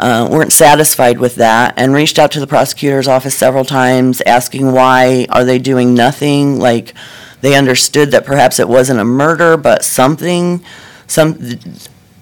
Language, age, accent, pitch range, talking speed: English, 40-59, American, 130-150 Hz, 155 wpm